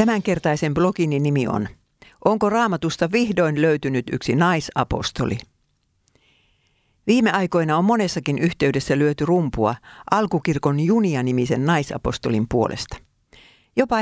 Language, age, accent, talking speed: Finnish, 60-79, native, 95 wpm